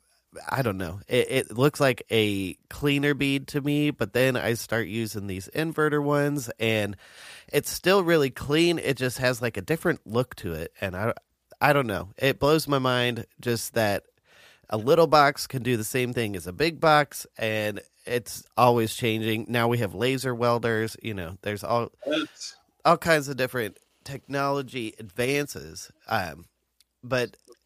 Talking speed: 170 wpm